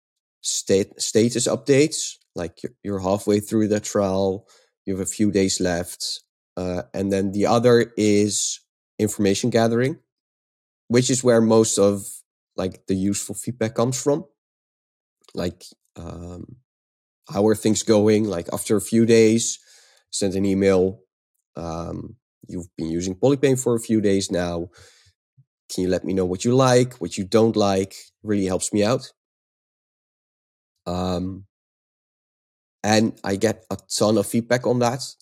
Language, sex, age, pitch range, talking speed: English, male, 20-39, 95-115 Hz, 145 wpm